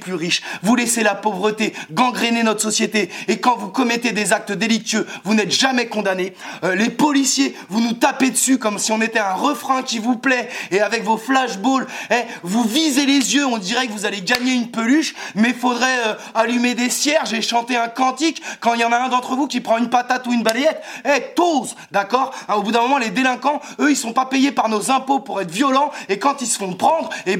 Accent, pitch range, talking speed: French, 210-255 Hz, 230 wpm